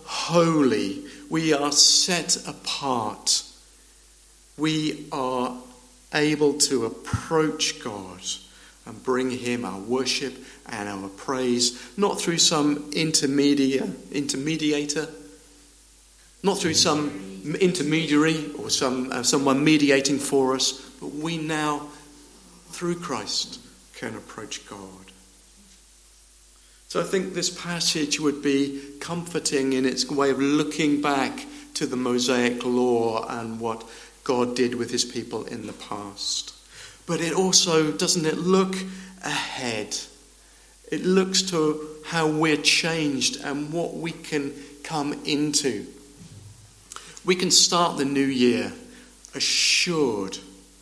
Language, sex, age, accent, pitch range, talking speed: English, male, 50-69, British, 125-160 Hz, 115 wpm